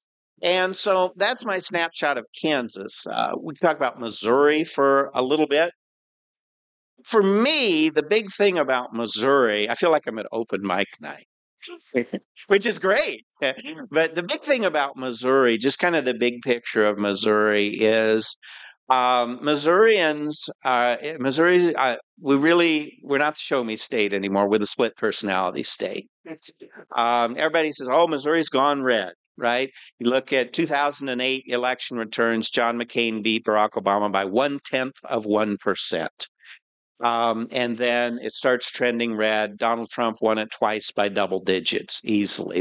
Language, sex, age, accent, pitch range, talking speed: English, male, 50-69, American, 110-150 Hz, 155 wpm